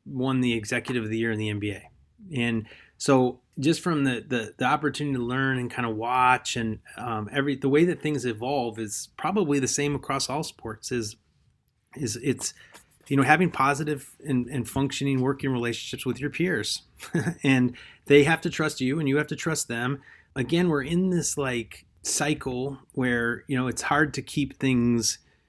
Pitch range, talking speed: 125-145 Hz, 185 wpm